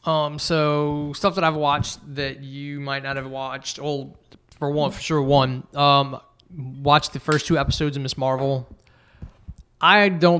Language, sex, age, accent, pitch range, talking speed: English, male, 20-39, American, 130-145 Hz, 165 wpm